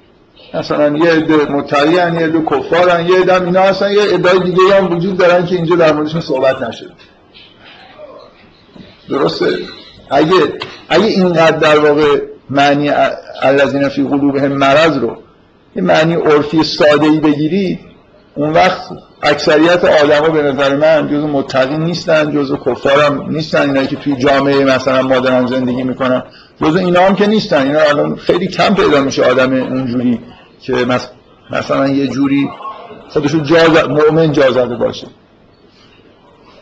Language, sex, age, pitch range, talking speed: Persian, male, 50-69, 140-165 Hz, 140 wpm